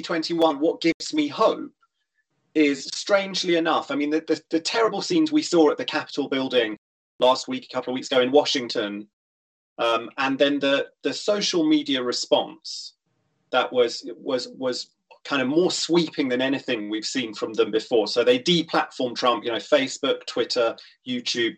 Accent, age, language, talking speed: British, 30-49, English, 170 wpm